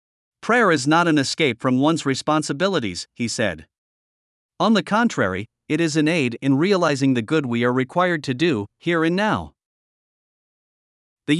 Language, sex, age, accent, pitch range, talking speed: English, male, 50-69, American, 130-170 Hz, 160 wpm